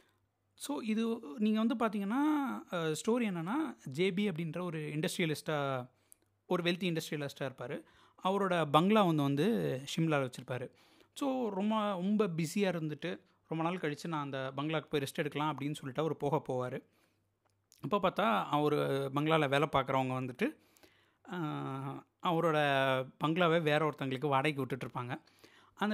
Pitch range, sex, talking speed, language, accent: 140-200 Hz, male, 125 wpm, Tamil, native